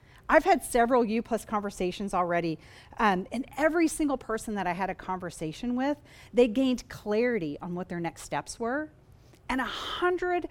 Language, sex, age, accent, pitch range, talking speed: English, female, 40-59, American, 165-235 Hz, 155 wpm